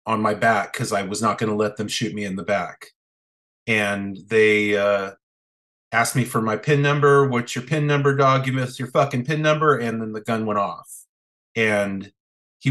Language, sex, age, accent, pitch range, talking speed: English, male, 30-49, American, 100-120 Hz, 210 wpm